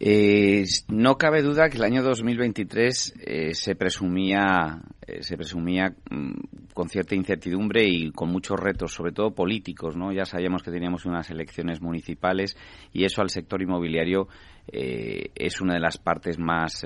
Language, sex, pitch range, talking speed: Spanish, male, 90-110 Hz, 155 wpm